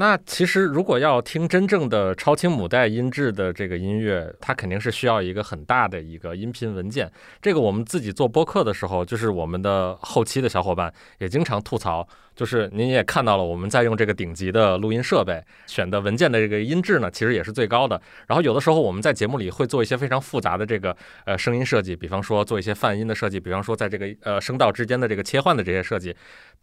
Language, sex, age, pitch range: Chinese, male, 20-39, 95-130 Hz